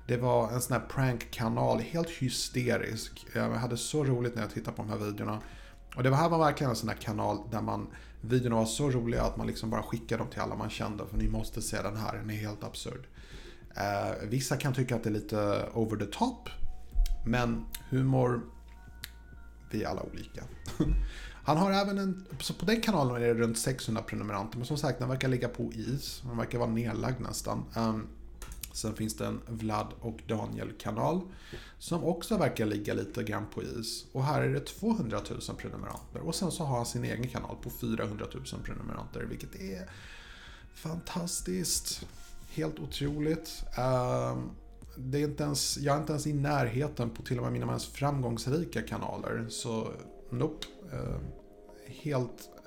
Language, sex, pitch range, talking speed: Swedish, male, 110-130 Hz, 180 wpm